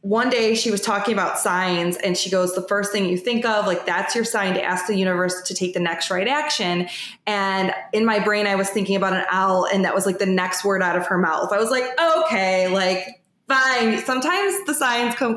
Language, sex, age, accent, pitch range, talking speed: English, female, 20-39, American, 185-235 Hz, 240 wpm